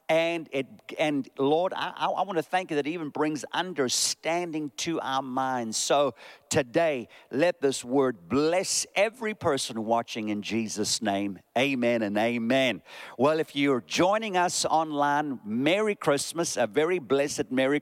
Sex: male